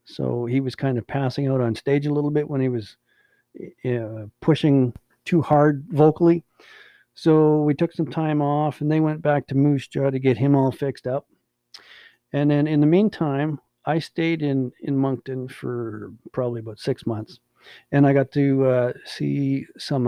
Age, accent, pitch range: 50-69, American, 130-155 Hz